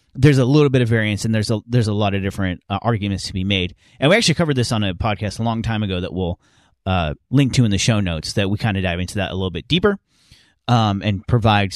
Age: 30-49